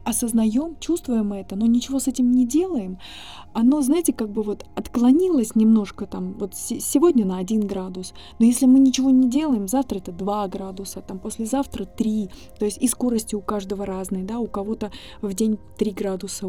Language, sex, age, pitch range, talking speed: Russian, female, 20-39, 195-235 Hz, 180 wpm